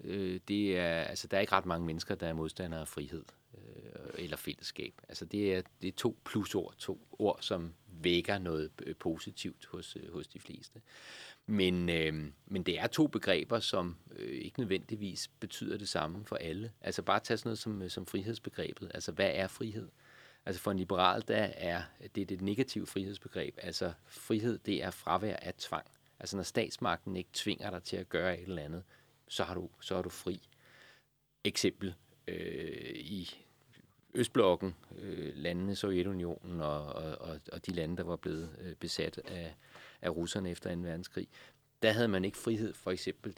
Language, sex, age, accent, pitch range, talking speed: Danish, male, 40-59, native, 85-110 Hz, 170 wpm